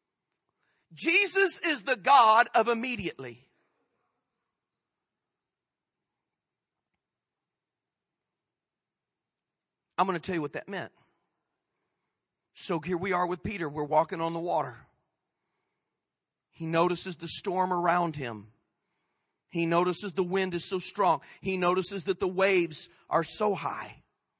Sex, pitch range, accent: male, 165-205 Hz, American